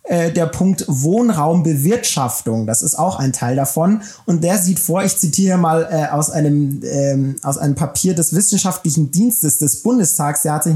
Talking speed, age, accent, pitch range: 165 wpm, 30-49, German, 150-190 Hz